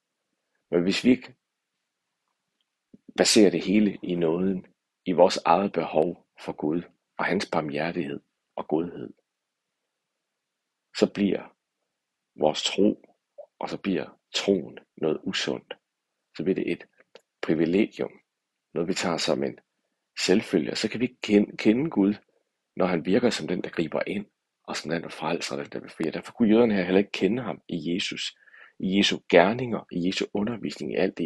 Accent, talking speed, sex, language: native, 160 wpm, male, Danish